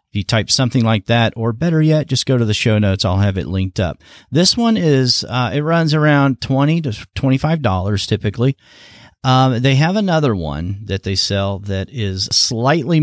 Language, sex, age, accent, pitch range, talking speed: English, male, 40-59, American, 95-125 Hz, 190 wpm